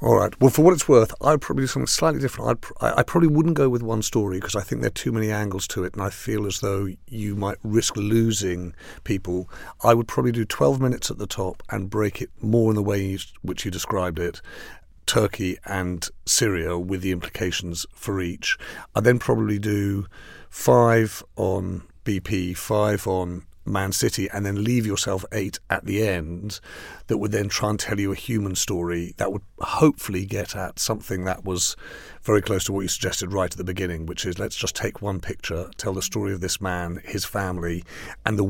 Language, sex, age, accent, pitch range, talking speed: English, male, 50-69, British, 95-110 Hz, 205 wpm